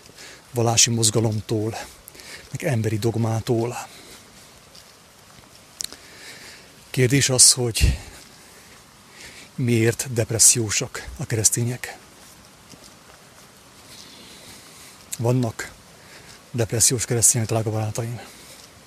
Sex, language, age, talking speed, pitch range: male, English, 30-49, 55 wpm, 115-130 Hz